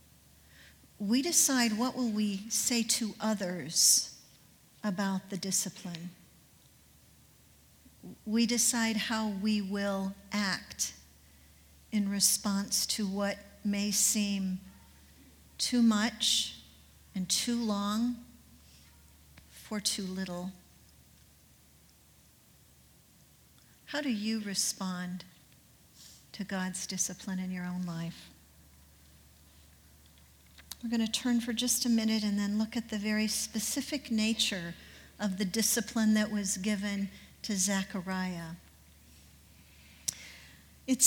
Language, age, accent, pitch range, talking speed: English, 50-69, American, 165-220 Hz, 95 wpm